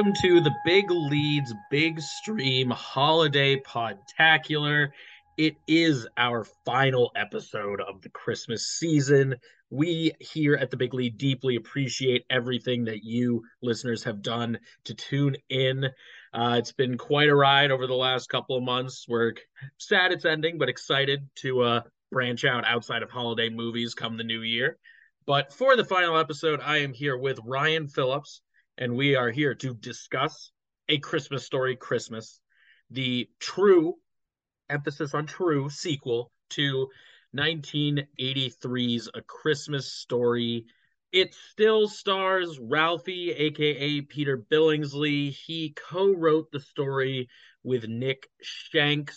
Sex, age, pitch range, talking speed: male, 20-39, 125-155 Hz, 135 wpm